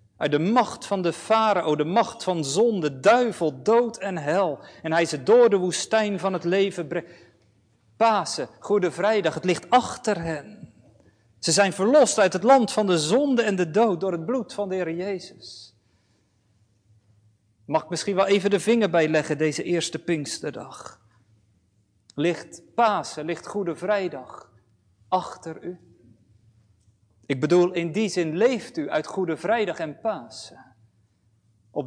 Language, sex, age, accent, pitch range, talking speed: Dutch, male, 40-59, Dutch, 130-205 Hz, 155 wpm